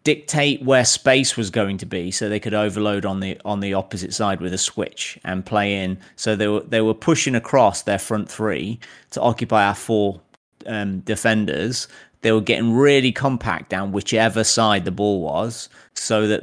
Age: 30-49